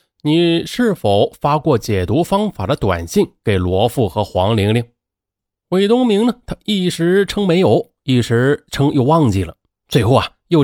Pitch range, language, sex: 95-150 Hz, Chinese, male